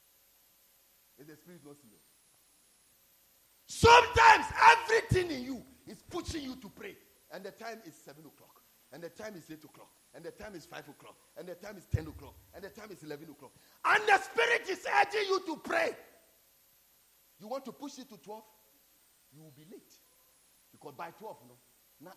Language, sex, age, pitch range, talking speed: English, male, 40-59, 155-260 Hz, 185 wpm